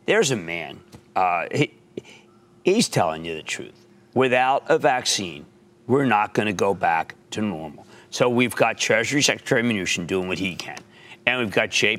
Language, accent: English, American